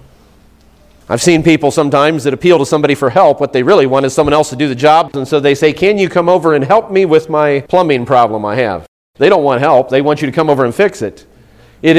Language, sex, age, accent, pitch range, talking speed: English, male, 40-59, American, 130-165 Hz, 260 wpm